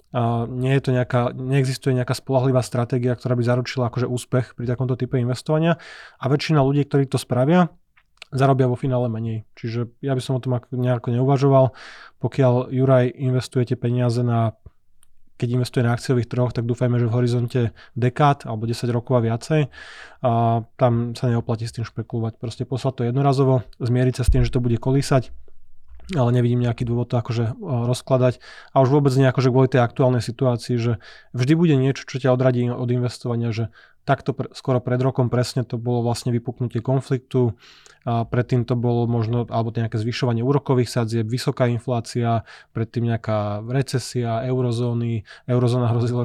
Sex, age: male, 20-39